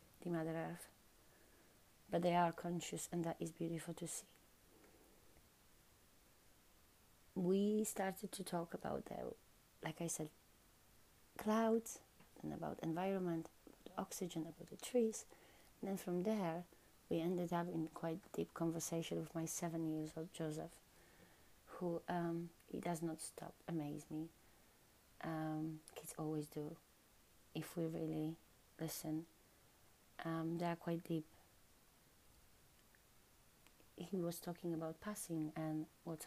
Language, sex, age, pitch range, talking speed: English, female, 30-49, 155-170 Hz, 125 wpm